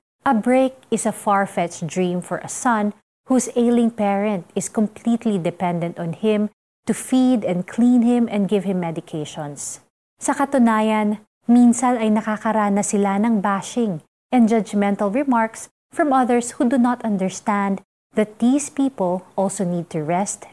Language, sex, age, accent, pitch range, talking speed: Filipino, female, 30-49, native, 185-230 Hz, 145 wpm